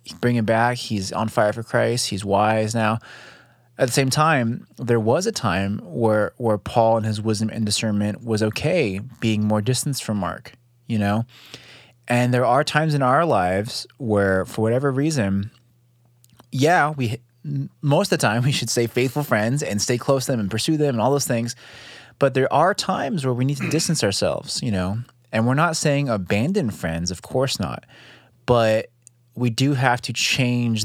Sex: male